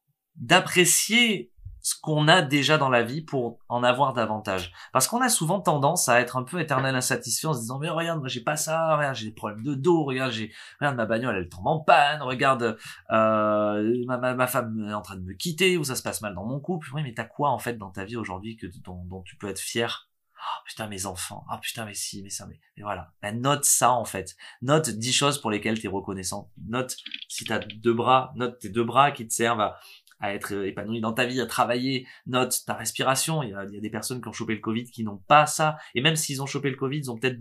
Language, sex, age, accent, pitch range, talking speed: French, male, 20-39, French, 110-145 Hz, 255 wpm